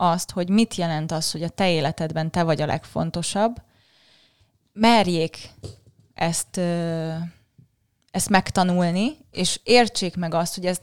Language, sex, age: Hungarian, female, 20-39